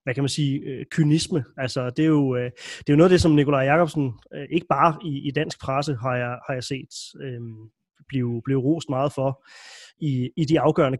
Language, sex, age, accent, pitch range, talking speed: Danish, male, 30-49, native, 125-155 Hz, 215 wpm